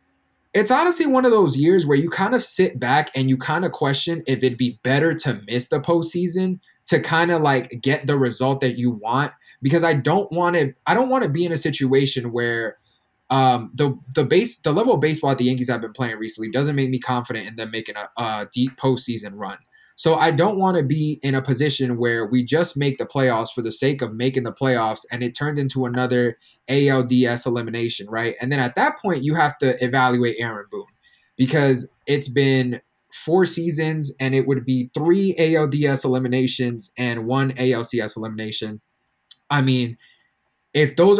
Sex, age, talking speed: male, 20-39, 200 wpm